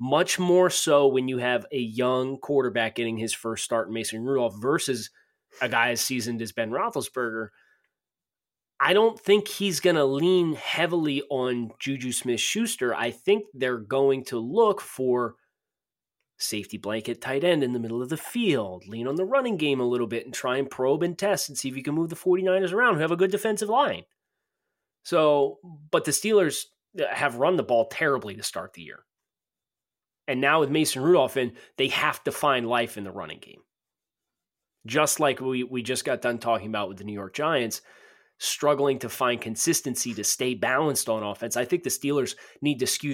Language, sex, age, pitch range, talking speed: English, male, 30-49, 115-150 Hz, 195 wpm